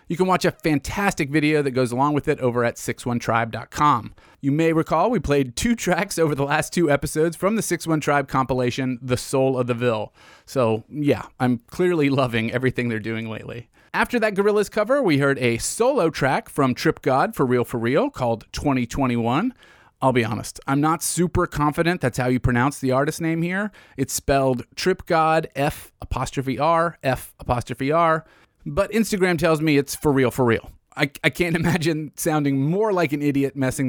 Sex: male